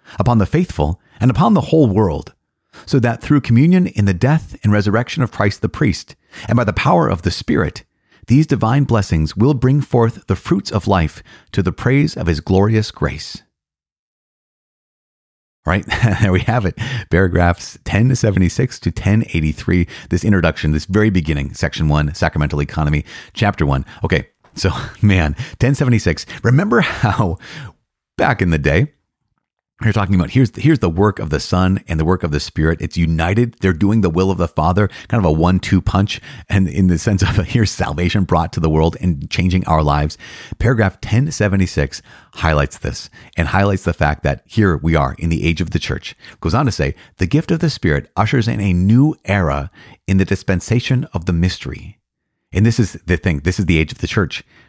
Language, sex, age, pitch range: English, male, 40-59, 85-115 Hz